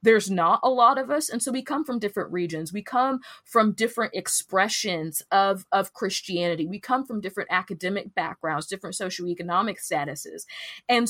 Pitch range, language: 180-230 Hz, English